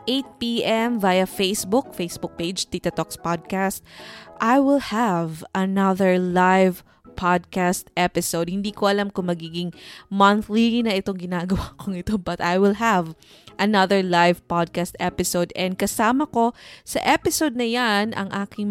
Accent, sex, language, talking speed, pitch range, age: Filipino, female, English, 140 wpm, 175-225 Hz, 20-39